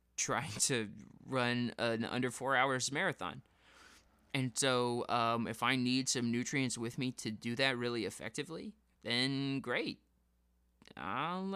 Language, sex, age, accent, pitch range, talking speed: English, male, 20-39, American, 110-140 Hz, 135 wpm